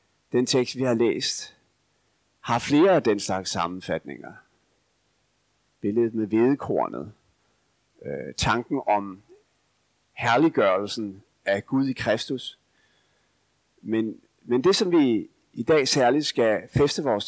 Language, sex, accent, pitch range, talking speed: Danish, male, native, 105-140 Hz, 115 wpm